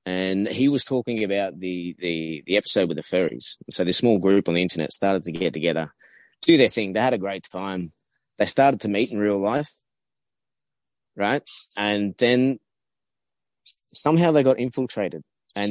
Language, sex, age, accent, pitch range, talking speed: English, male, 20-39, Australian, 100-130 Hz, 175 wpm